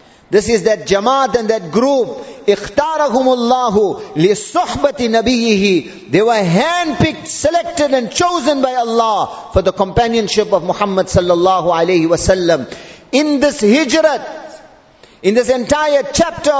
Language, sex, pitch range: English, male, 190-290 Hz